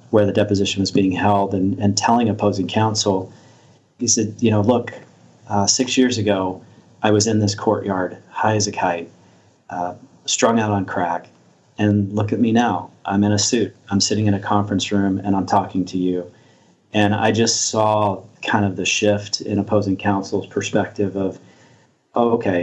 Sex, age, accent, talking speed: male, 40-59, American, 180 wpm